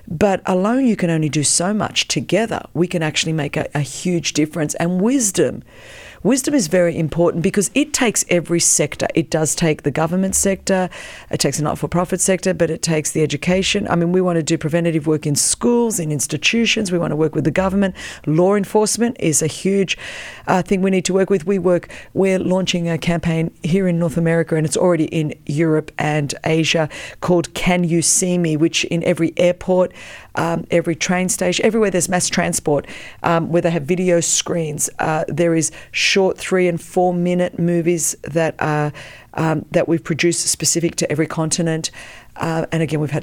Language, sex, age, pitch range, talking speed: English, female, 40-59, 155-185 Hz, 190 wpm